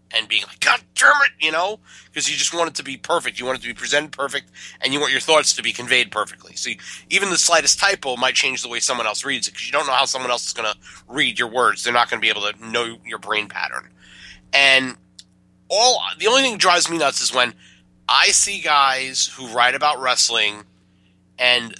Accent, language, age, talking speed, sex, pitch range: American, English, 30-49, 240 wpm, male, 110-140 Hz